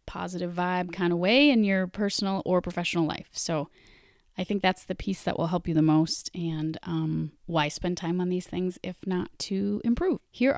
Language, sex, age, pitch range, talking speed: English, female, 30-49, 175-230 Hz, 205 wpm